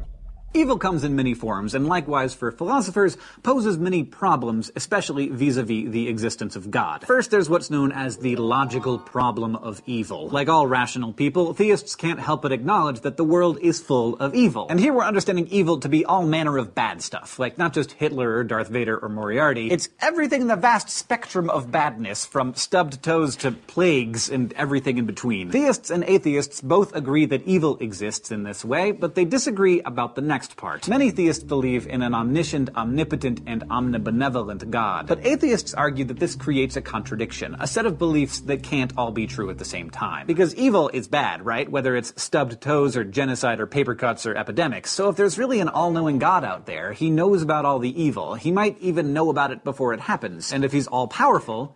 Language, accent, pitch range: English, American, 125-175 Hz